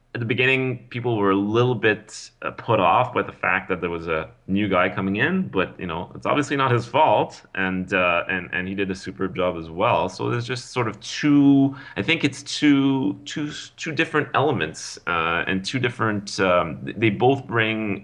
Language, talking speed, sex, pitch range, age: English, 210 wpm, male, 90-120 Hz, 30-49